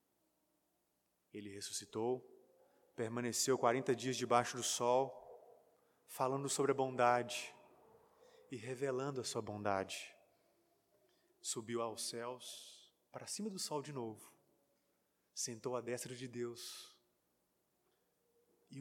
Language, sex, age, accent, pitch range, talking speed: Portuguese, male, 20-39, Brazilian, 115-150 Hz, 100 wpm